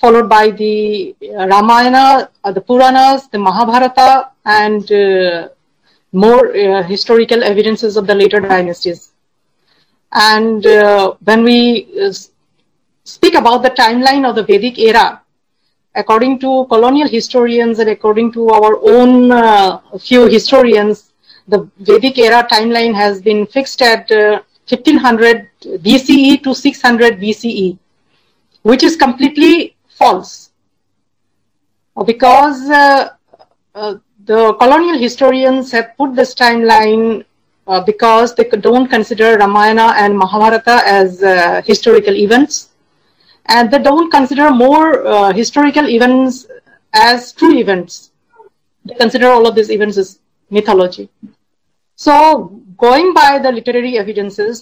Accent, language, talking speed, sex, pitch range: native, Hindi, 120 wpm, female, 210-265 Hz